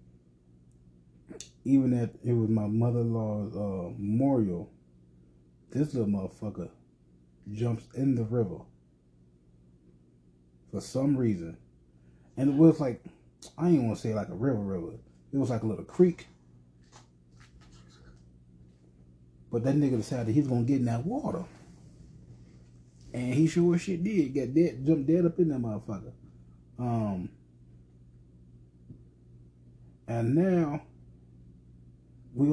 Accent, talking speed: American, 120 wpm